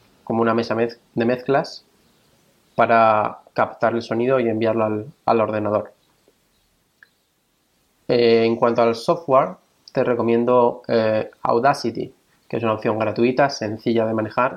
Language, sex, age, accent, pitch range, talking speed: Spanish, male, 20-39, Spanish, 110-125 Hz, 130 wpm